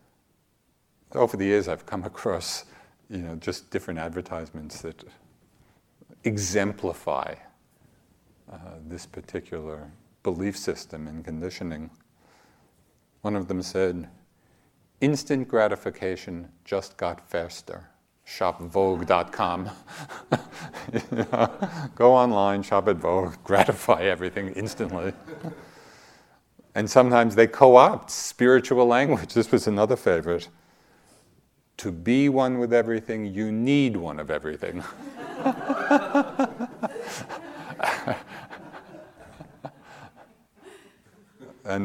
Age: 50-69